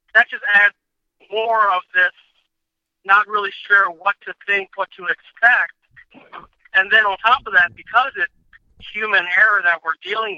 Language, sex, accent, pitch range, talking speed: English, male, American, 190-230 Hz, 160 wpm